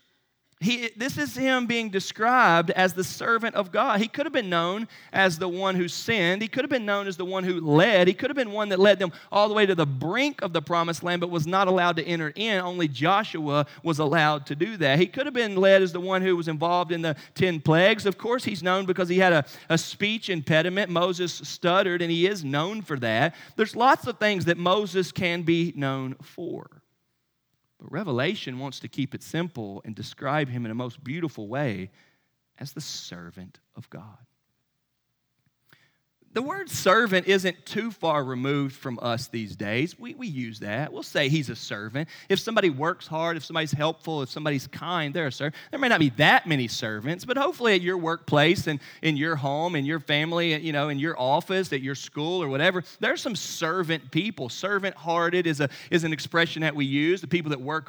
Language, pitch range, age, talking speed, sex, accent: English, 150-190 Hz, 40-59, 215 wpm, male, American